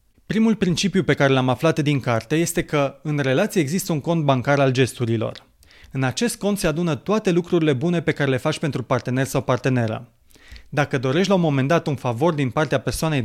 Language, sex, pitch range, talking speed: Romanian, male, 130-170 Hz, 205 wpm